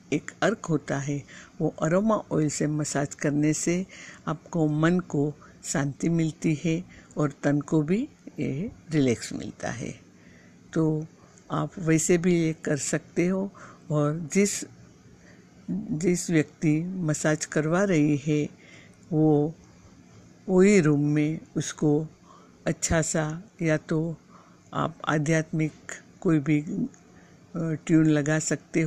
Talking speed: 120 wpm